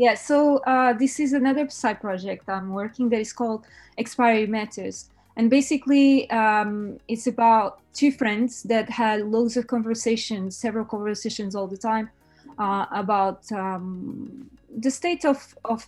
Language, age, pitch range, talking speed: English, 20-39, 190-230 Hz, 145 wpm